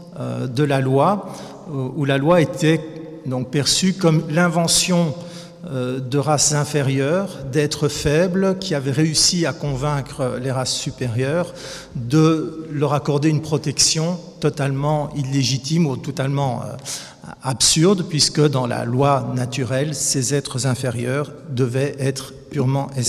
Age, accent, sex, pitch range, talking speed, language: 50-69, French, male, 130-155 Hz, 120 wpm, French